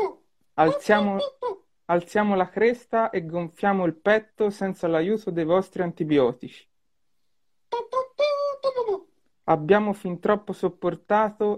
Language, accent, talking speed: Italian, native, 90 wpm